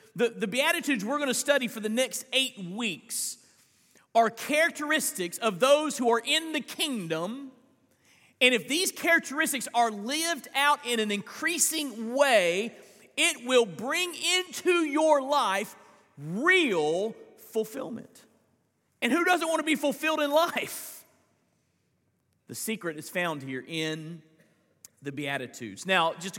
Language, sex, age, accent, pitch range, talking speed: English, male, 40-59, American, 195-290 Hz, 135 wpm